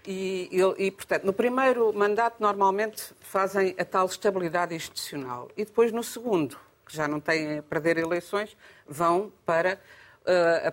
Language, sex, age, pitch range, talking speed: Portuguese, female, 50-69, 145-195 Hz, 150 wpm